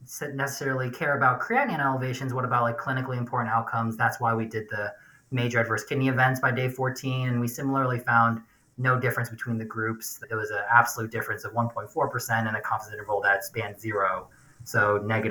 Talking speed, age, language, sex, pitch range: 190 wpm, 20-39, English, male, 115-140 Hz